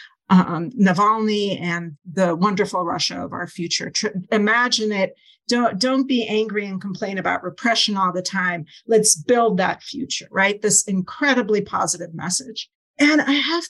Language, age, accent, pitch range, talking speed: English, 50-69, American, 190-255 Hz, 155 wpm